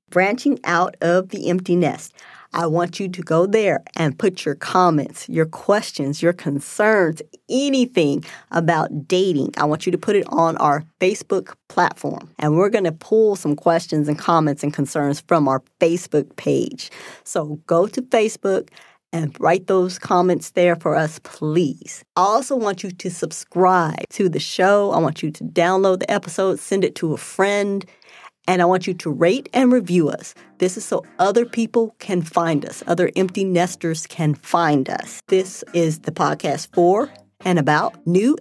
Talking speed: 175 wpm